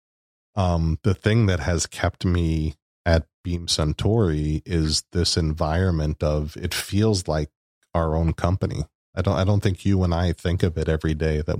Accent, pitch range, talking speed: American, 80-95 Hz, 175 wpm